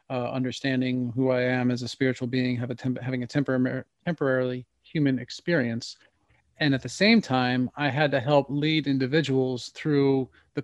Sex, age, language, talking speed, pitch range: male, 40-59, English, 175 wpm, 125-145 Hz